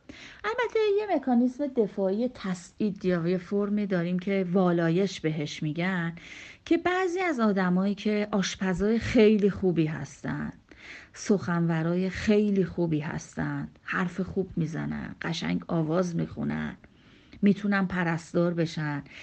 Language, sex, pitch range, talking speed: Persian, female, 175-235 Hz, 110 wpm